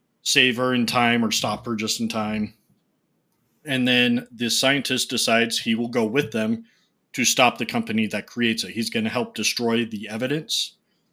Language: English